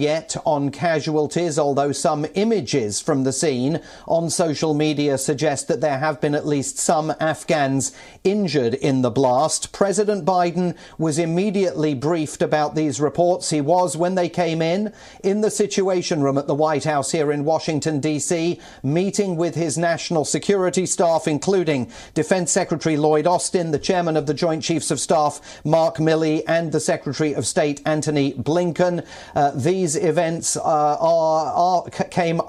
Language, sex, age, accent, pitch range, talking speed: English, male, 40-59, British, 145-175 Hz, 155 wpm